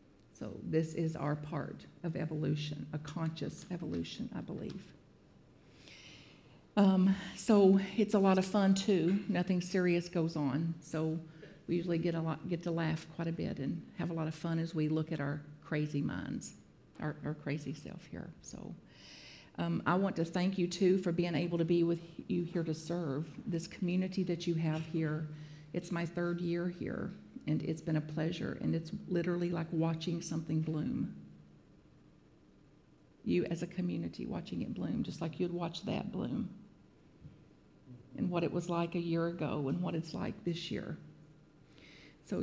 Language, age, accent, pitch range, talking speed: English, 50-69, American, 155-180 Hz, 175 wpm